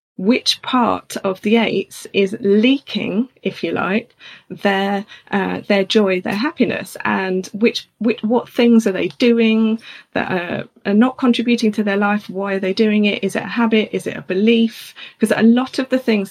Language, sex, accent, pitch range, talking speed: English, female, British, 195-240 Hz, 190 wpm